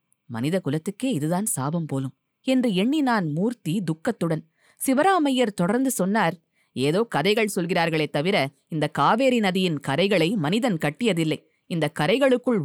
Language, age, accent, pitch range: Tamil, 20-39, native, 160-220 Hz